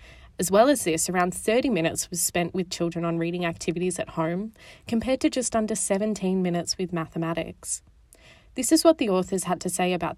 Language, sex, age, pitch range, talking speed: English, female, 20-39, 175-235 Hz, 195 wpm